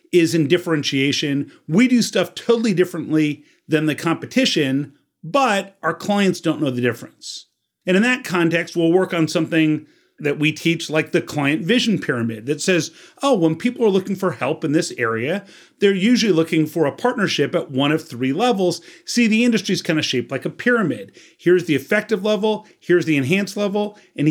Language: English